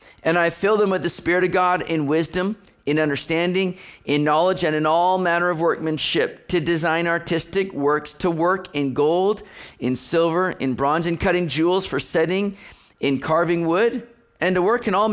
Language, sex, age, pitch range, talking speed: English, male, 40-59, 150-185 Hz, 185 wpm